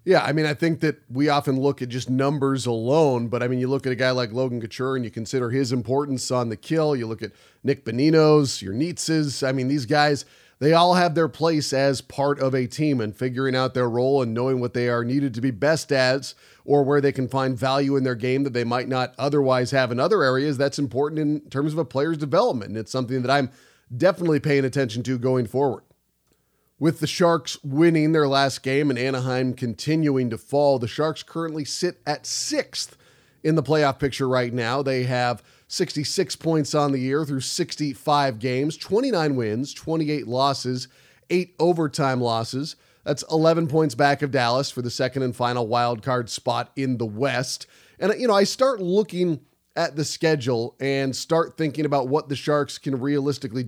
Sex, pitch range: male, 125-150 Hz